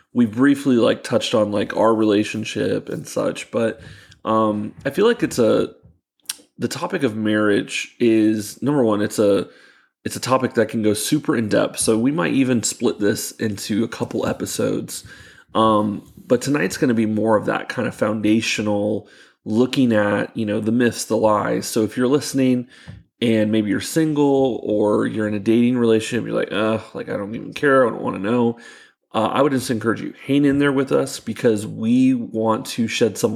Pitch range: 105-125 Hz